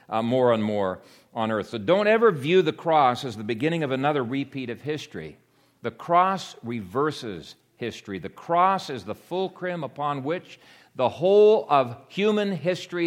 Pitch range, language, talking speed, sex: 110-150 Hz, English, 165 wpm, male